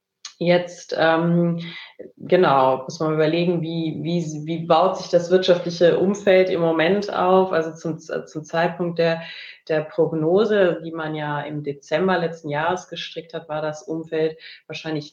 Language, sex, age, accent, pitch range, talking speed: German, female, 30-49, German, 150-175 Hz, 145 wpm